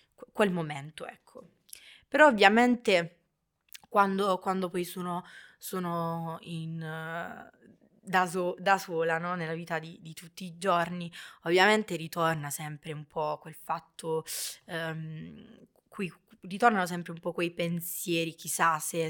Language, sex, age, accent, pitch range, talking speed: Italian, female, 20-39, native, 165-200 Hz, 125 wpm